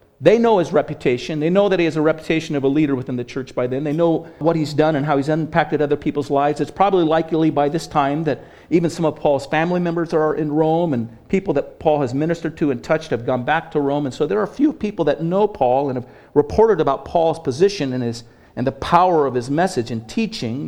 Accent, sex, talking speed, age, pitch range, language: American, male, 250 wpm, 50-69, 125-160 Hz, English